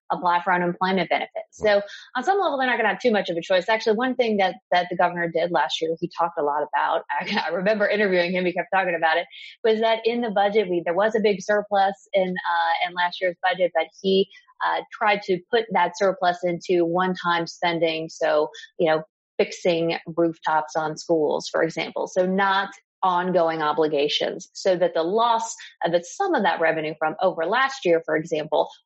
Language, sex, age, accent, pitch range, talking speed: English, female, 30-49, American, 160-210 Hz, 210 wpm